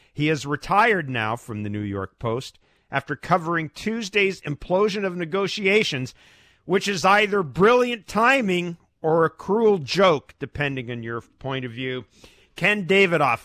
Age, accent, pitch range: 50-69, American, 110-165 Hz